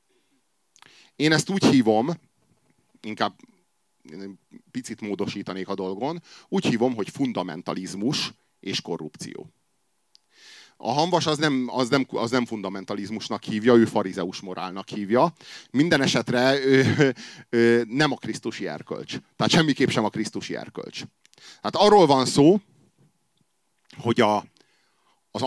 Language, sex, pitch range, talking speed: Hungarian, male, 110-140 Hz, 100 wpm